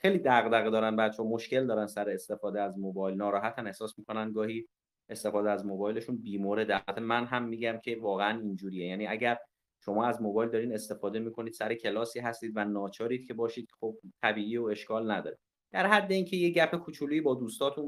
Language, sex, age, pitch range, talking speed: Persian, male, 30-49, 115-155 Hz, 170 wpm